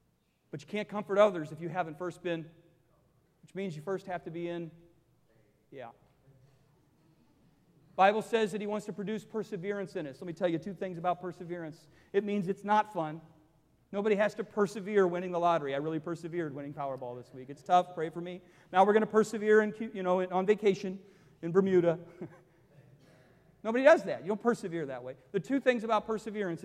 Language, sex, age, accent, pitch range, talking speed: English, male, 40-59, American, 150-200 Hz, 195 wpm